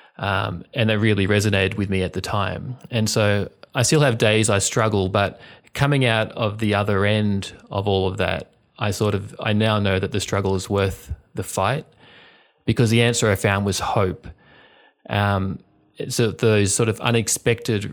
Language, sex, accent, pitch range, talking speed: English, male, Australian, 95-115 Hz, 185 wpm